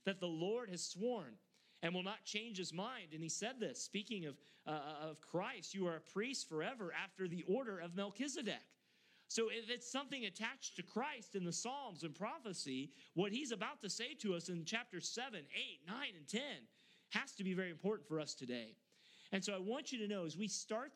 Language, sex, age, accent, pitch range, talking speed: English, male, 40-59, American, 155-215 Hz, 210 wpm